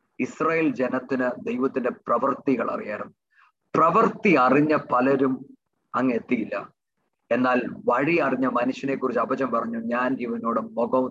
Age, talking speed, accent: 30-49, 70 wpm, Indian